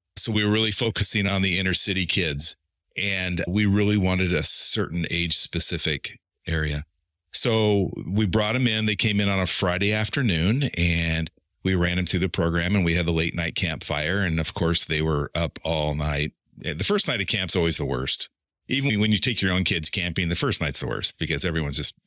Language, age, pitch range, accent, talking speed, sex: English, 40-59, 80-100 Hz, American, 210 wpm, male